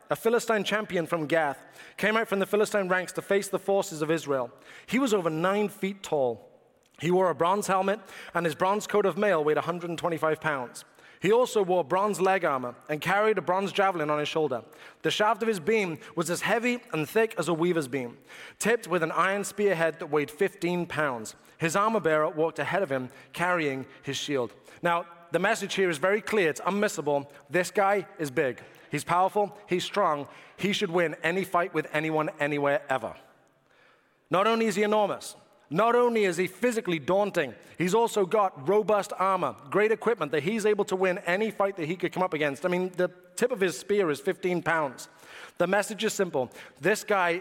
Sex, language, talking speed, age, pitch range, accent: male, English, 200 wpm, 30-49, 160-205 Hz, British